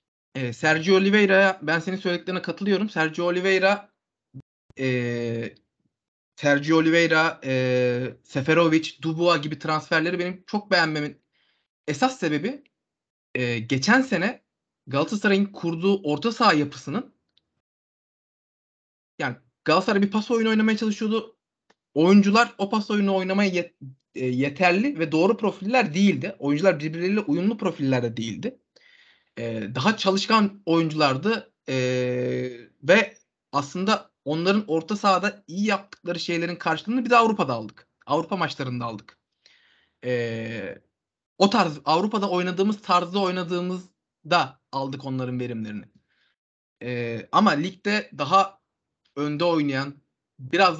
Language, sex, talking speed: Turkish, male, 100 wpm